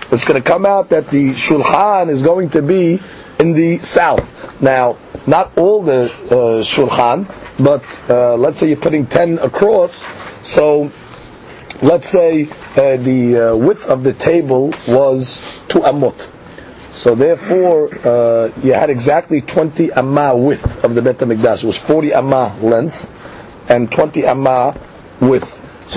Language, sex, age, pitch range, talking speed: English, male, 40-59, 130-170 Hz, 150 wpm